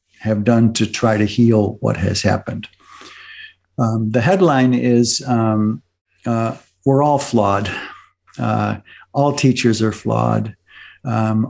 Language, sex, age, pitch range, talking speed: English, male, 60-79, 110-135 Hz, 125 wpm